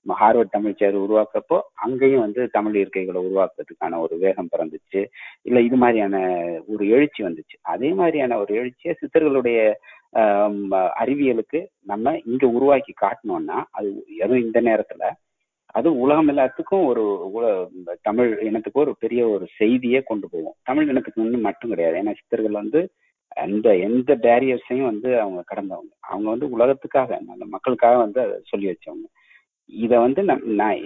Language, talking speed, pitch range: Tamil, 130 wpm, 105-160 Hz